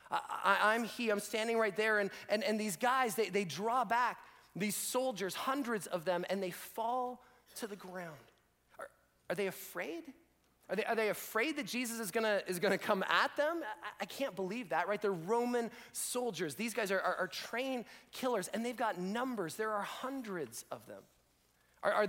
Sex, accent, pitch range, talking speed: male, American, 185-235 Hz, 200 wpm